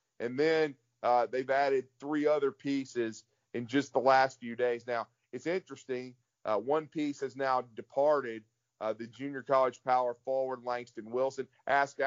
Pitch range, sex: 120-135 Hz, male